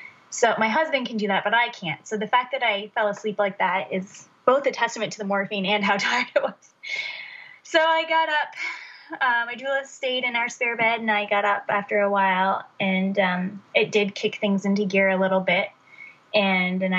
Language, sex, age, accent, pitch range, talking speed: English, female, 20-39, American, 200-245 Hz, 220 wpm